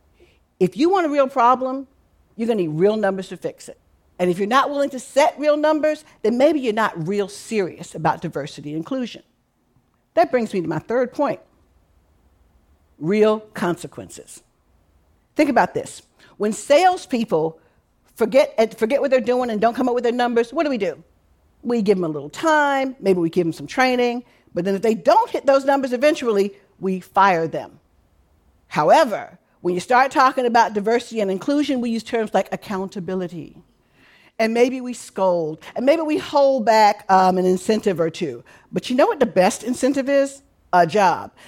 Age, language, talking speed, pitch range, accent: 50-69, English, 180 wpm, 175-265 Hz, American